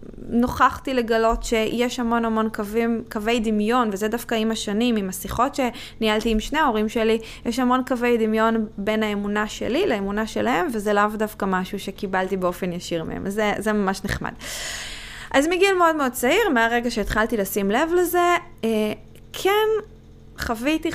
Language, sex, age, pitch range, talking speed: Hebrew, female, 20-39, 210-265 Hz, 150 wpm